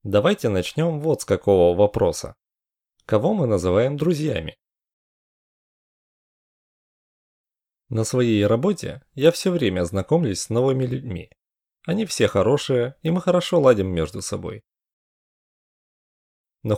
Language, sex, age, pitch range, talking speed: English, male, 30-49, 95-145 Hz, 105 wpm